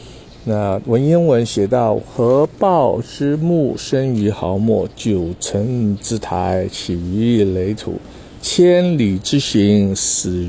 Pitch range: 100-130 Hz